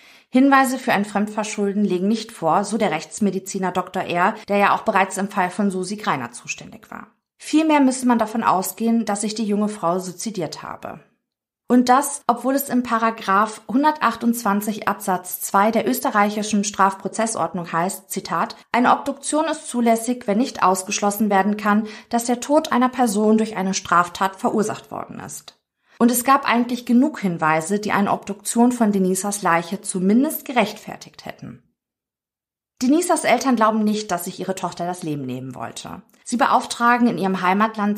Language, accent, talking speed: German, German, 160 wpm